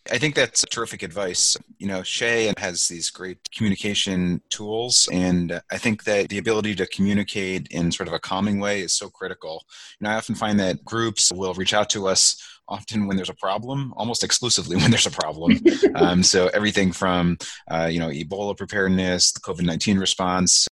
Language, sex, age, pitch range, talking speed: English, male, 30-49, 90-105 Hz, 185 wpm